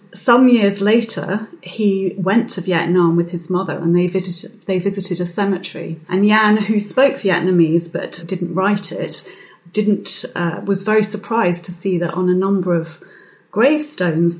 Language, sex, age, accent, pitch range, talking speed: English, female, 30-49, British, 175-195 Hz, 165 wpm